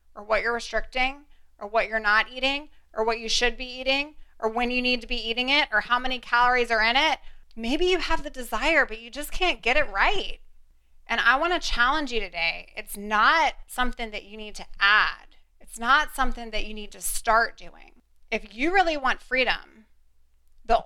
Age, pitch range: 20-39, 215-285 Hz